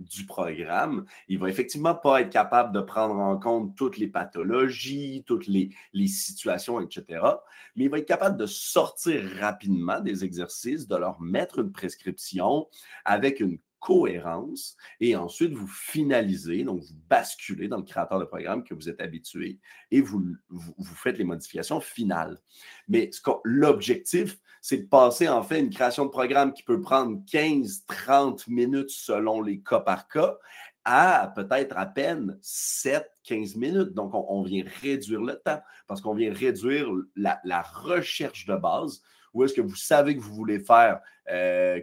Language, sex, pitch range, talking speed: French, male, 95-150 Hz, 170 wpm